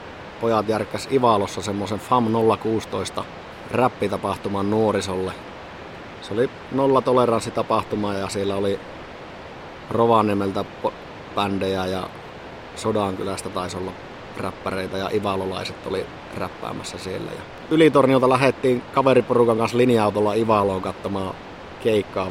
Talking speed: 100 wpm